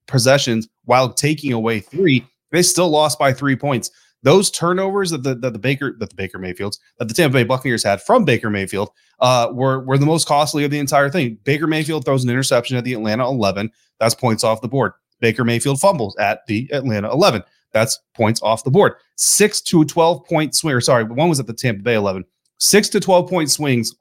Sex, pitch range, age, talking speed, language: male, 110-145 Hz, 30-49, 210 wpm, English